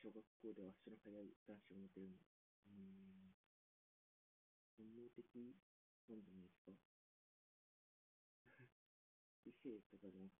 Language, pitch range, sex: Japanese, 95-120 Hz, female